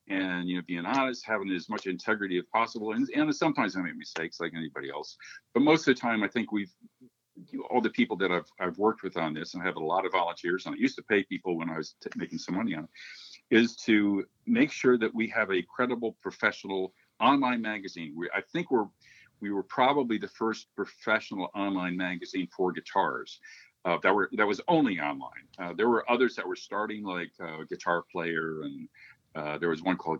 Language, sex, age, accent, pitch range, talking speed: English, male, 50-69, American, 85-130 Hz, 225 wpm